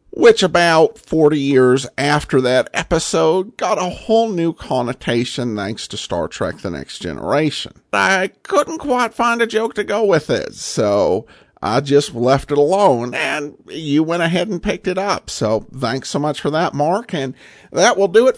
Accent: American